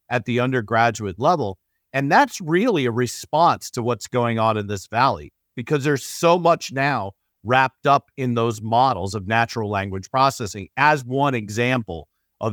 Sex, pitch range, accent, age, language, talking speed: male, 105-145 Hz, American, 50-69, Spanish, 165 wpm